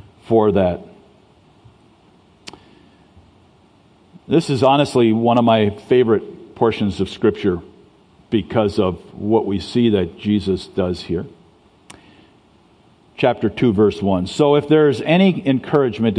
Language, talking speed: English, 110 wpm